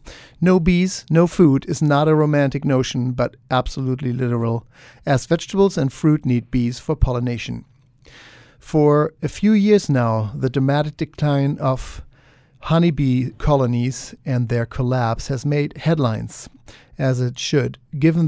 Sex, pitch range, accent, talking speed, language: male, 125-150 Hz, German, 135 wpm, English